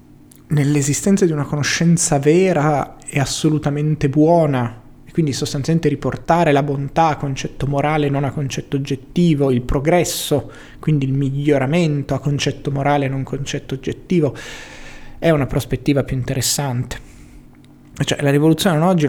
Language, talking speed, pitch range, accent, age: Italian, 140 wpm, 130-150 Hz, native, 30-49